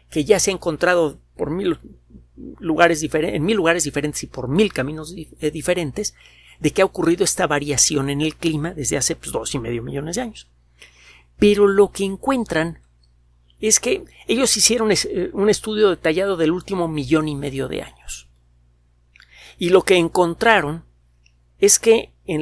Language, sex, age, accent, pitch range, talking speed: Spanish, male, 50-69, Mexican, 115-190 Hz, 165 wpm